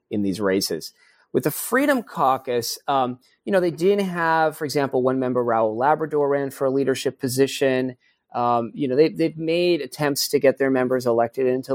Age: 30-49